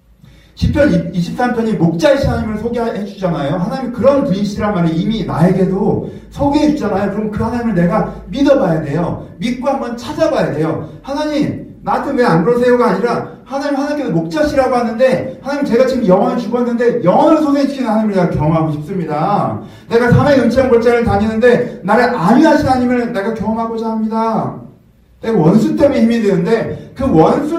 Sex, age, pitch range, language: male, 40-59, 175-250 Hz, Korean